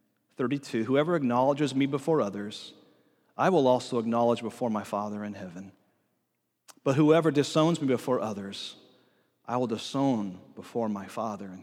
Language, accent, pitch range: English, American, 120-160 Hz